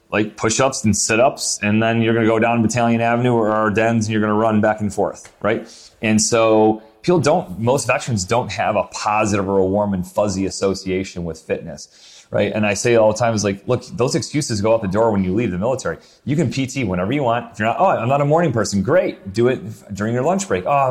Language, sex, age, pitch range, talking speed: English, male, 30-49, 105-130 Hz, 245 wpm